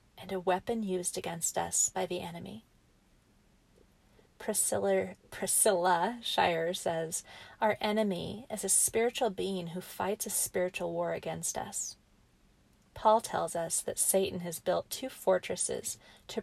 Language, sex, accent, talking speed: English, female, American, 130 wpm